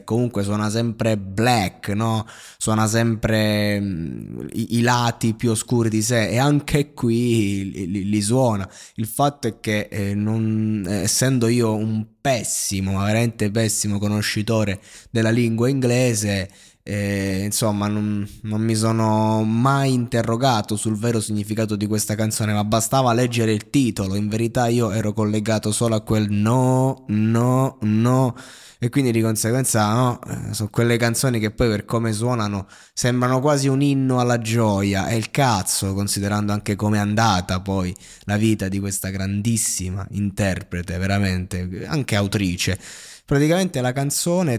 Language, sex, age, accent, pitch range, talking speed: Italian, male, 20-39, native, 105-120 Hz, 145 wpm